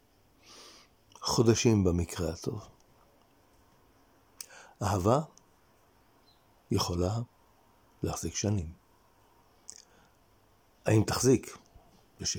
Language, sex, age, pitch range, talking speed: Hebrew, male, 60-79, 95-115 Hz, 50 wpm